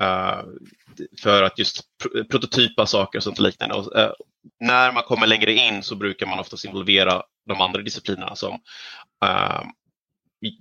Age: 30-49